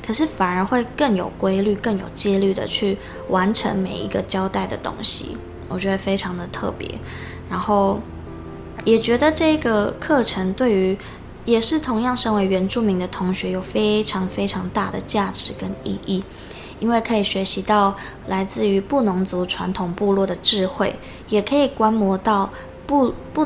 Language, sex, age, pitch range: Chinese, female, 20-39, 190-220 Hz